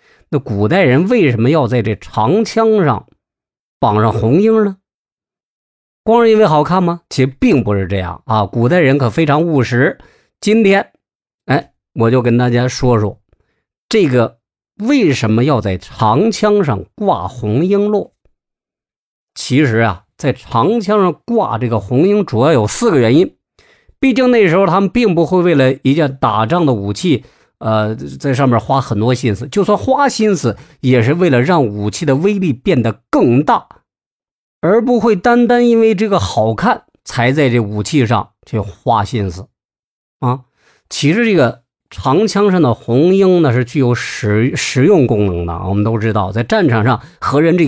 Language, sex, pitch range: Chinese, male, 115-190 Hz